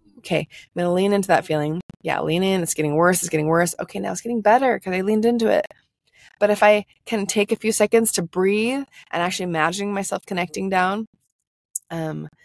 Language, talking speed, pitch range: English, 210 wpm, 160-205 Hz